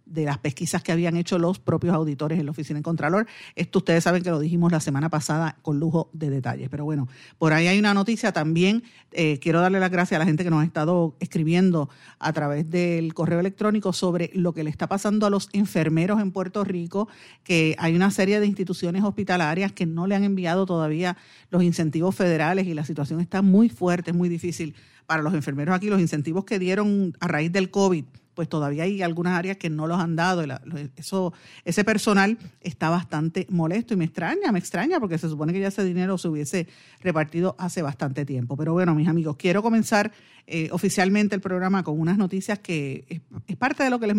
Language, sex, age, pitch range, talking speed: Spanish, female, 50-69, 160-195 Hz, 215 wpm